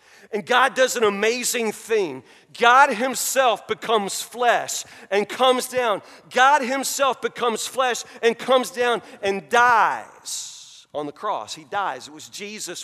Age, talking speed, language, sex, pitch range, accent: 40-59, 140 wpm, English, male, 225-265 Hz, American